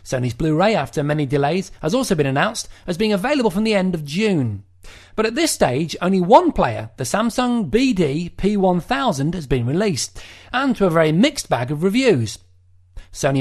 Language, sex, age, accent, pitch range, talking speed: English, male, 40-59, British, 125-195 Hz, 175 wpm